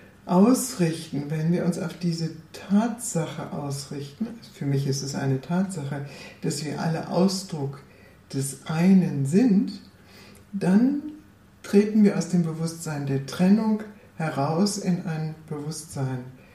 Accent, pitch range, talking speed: German, 135-175 Hz, 120 wpm